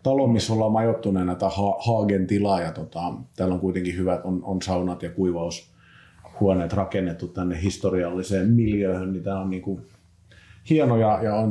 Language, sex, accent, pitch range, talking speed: Finnish, male, native, 85-100 Hz, 145 wpm